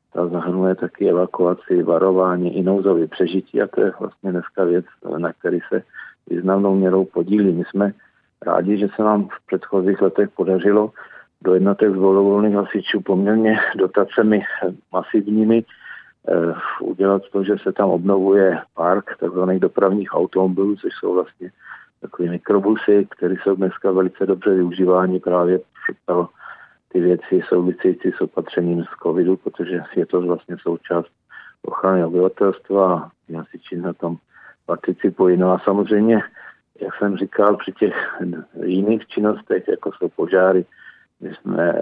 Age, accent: 50-69, native